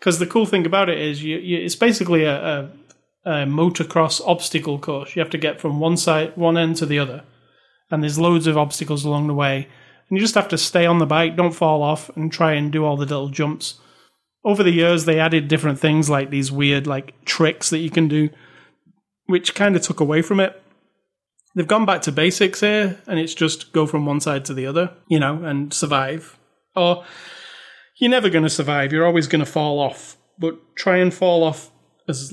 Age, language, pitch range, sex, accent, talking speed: 30-49, English, 145-175 Hz, male, British, 220 wpm